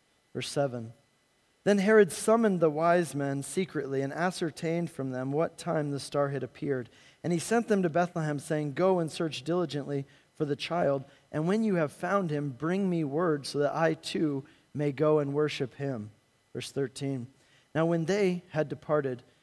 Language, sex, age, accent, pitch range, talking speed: English, male, 40-59, American, 140-160 Hz, 180 wpm